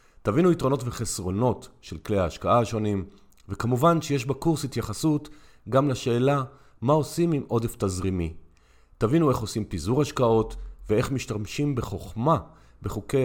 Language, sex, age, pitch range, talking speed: Hebrew, male, 40-59, 100-130 Hz, 120 wpm